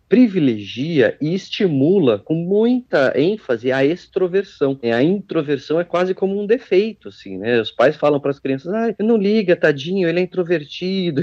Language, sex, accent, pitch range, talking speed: Portuguese, male, Brazilian, 135-180 Hz, 160 wpm